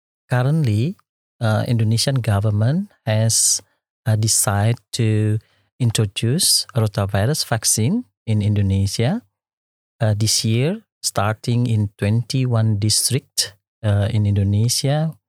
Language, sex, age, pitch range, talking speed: English, male, 50-69, 105-120 Hz, 90 wpm